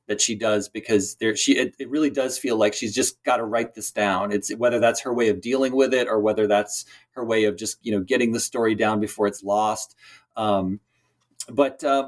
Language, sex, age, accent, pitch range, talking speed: English, male, 30-49, American, 105-125 Hz, 235 wpm